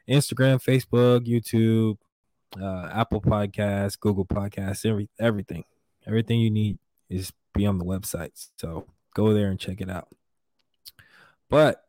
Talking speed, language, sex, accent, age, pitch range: 130 wpm, English, male, American, 20-39, 100-125 Hz